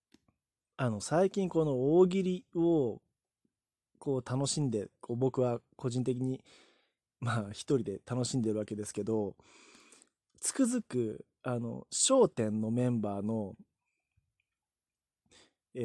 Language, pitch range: Japanese, 115-175 Hz